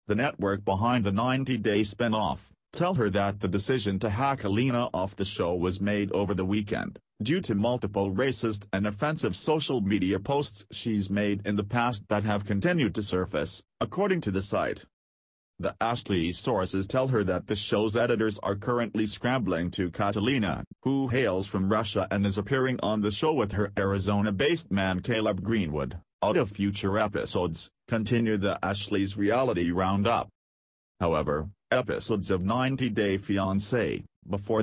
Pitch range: 100-120 Hz